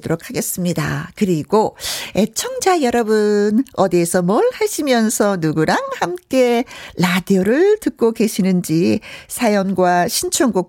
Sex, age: female, 50-69